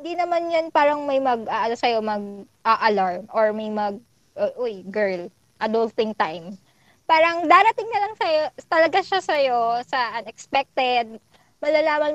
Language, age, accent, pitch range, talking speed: Filipino, 20-39, native, 220-280 Hz, 140 wpm